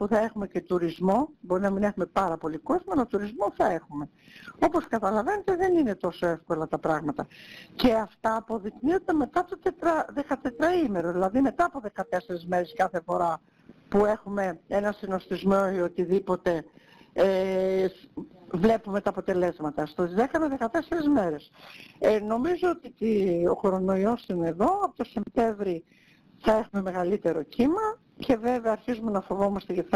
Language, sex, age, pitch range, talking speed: Greek, female, 50-69, 175-230 Hz, 145 wpm